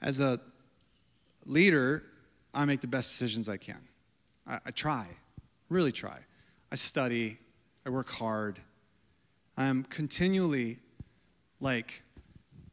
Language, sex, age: English, male, 30-49